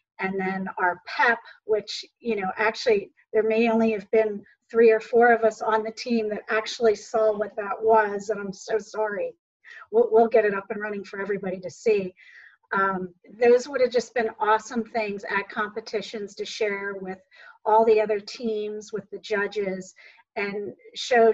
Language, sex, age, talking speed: English, female, 40-59, 180 wpm